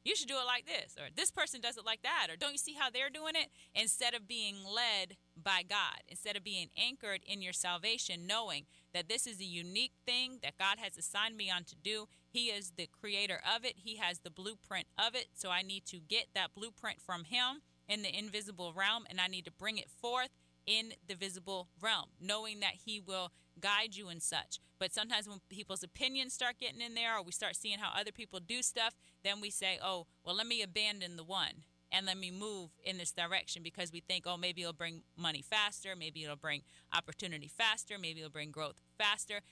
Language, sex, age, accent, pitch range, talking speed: English, female, 30-49, American, 175-225 Hz, 225 wpm